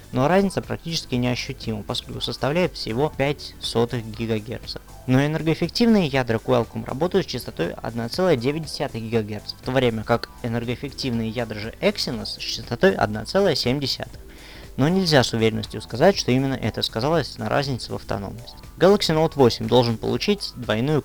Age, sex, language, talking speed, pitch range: 20-39, male, Russian, 140 wpm, 115-150 Hz